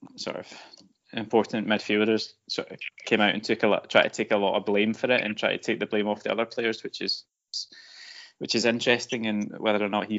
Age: 20-39